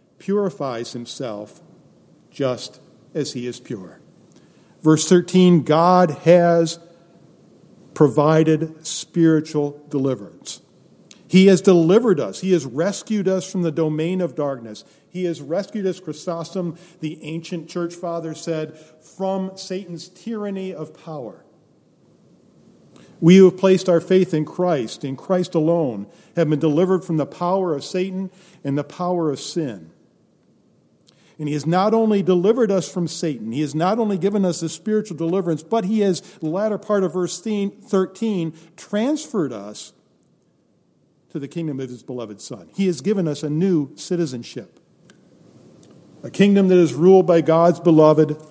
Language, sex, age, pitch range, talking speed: English, male, 50-69, 150-185 Hz, 145 wpm